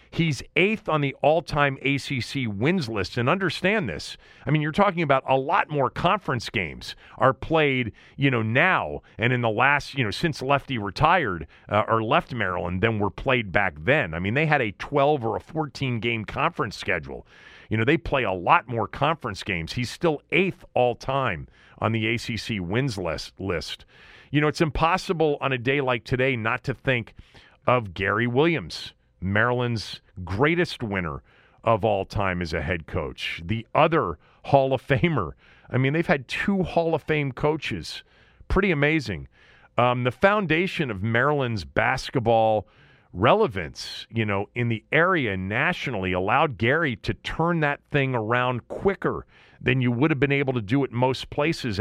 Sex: male